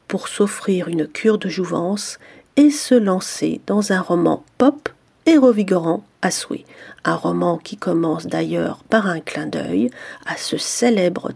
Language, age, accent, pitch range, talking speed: French, 40-59, French, 180-240 Hz, 155 wpm